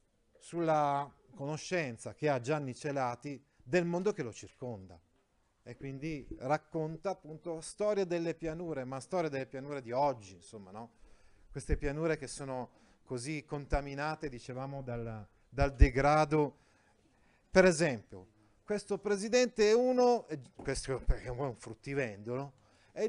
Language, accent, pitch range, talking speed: Italian, native, 125-175 Hz, 125 wpm